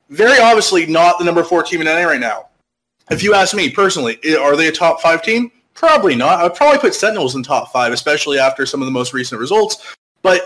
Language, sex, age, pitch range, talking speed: English, male, 20-39, 135-220 Hz, 230 wpm